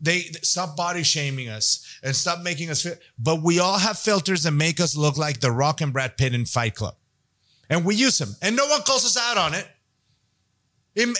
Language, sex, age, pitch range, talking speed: English, male, 30-49, 130-210 Hz, 225 wpm